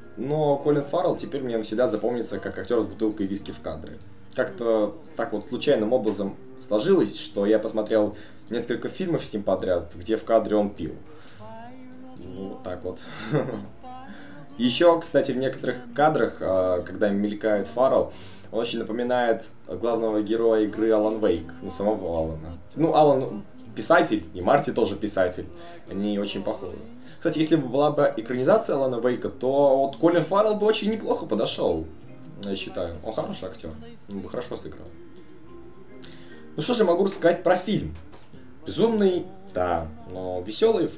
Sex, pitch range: male, 105-150 Hz